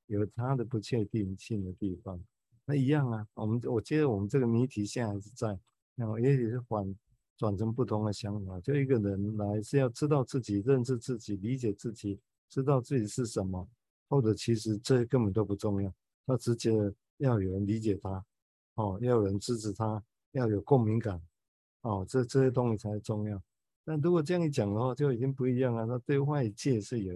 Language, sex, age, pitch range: Chinese, male, 50-69, 105-130 Hz